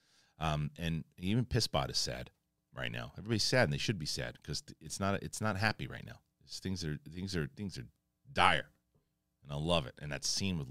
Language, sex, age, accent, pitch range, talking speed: English, male, 40-59, American, 75-100 Hz, 215 wpm